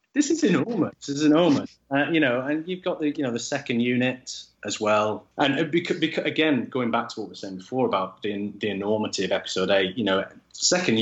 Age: 30-49